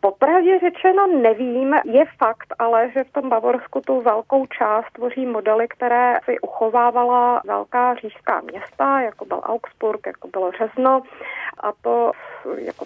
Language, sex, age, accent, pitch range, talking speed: Czech, female, 30-49, native, 200-245 Hz, 140 wpm